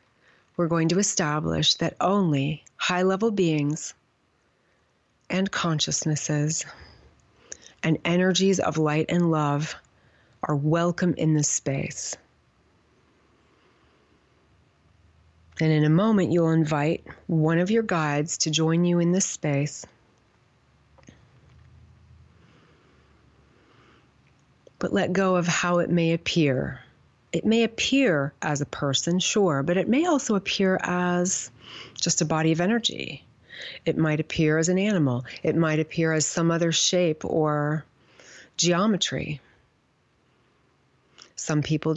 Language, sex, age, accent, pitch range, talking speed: English, female, 40-59, American, 150-175 Hz, 115 wpm